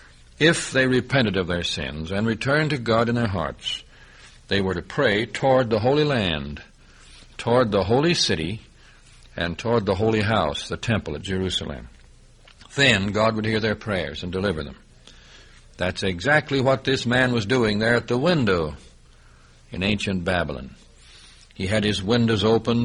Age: 60-79